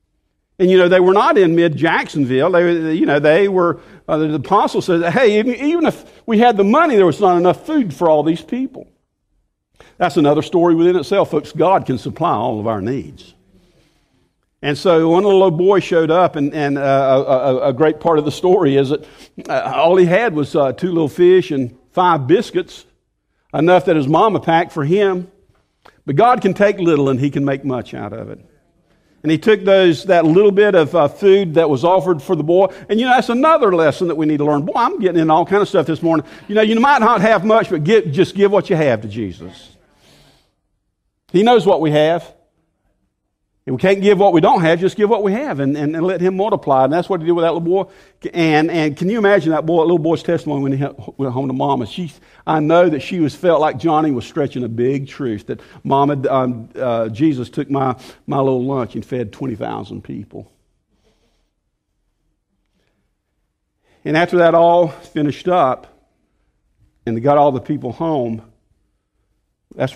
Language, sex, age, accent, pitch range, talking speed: English, male, 50-69, American, 135-185 Hz, 205 wpm